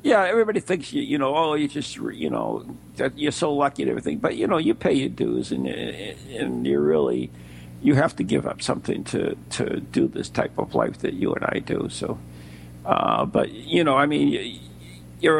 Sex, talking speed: male, 215 wpm